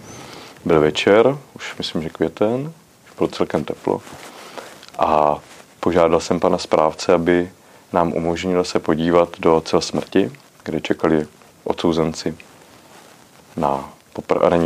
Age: 30-49